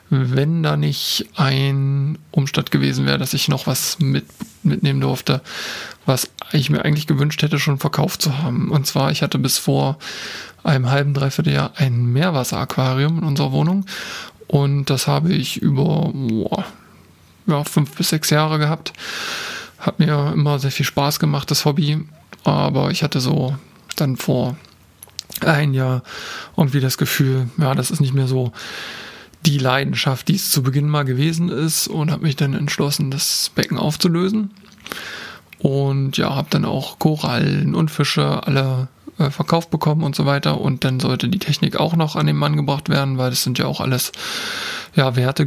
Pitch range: 135-160 Hz